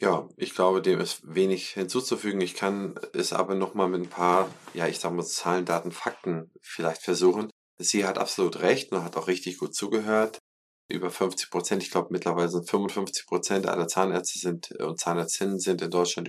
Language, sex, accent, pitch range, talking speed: German, male, German, 90-100 Hz, 190 wpm